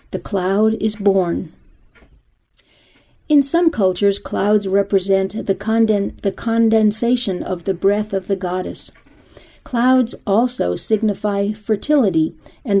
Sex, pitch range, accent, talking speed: female, 185-230 Hz, American, 110 wpm